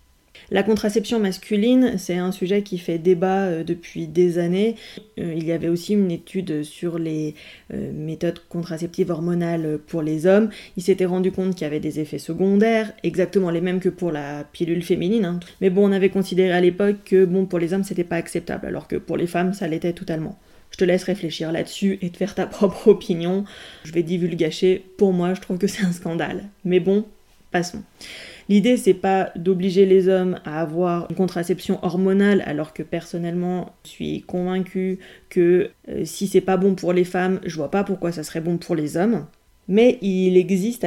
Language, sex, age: French, female, 20-39